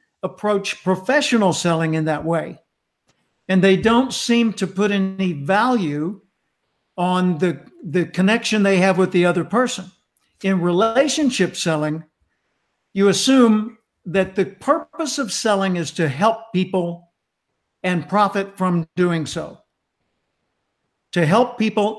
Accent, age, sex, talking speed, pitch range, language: American, 60-79, male, 125 wpm, 170-210 Hz, English